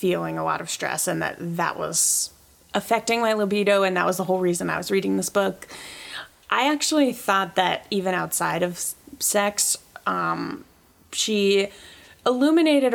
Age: 20-39